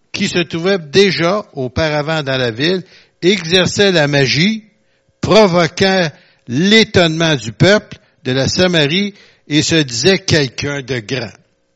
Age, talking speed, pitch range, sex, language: 60-79, 120 wpm, 125-175 Hz, male, French